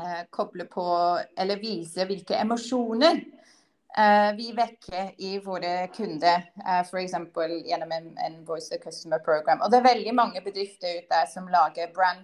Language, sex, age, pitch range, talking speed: English, female, 30-49, 185-230 Hz, 165 wpm